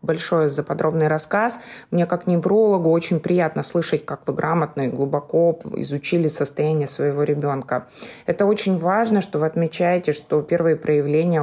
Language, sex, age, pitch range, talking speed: Russian, female, 20-39, 150-175 Hz, 145 wpm